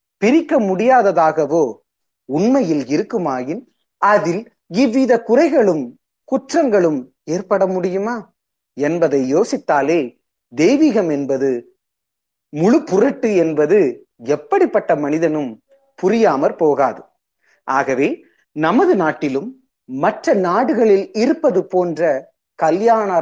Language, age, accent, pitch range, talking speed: Tamil, 30-49, native, 165-255 Hz, 75 wpm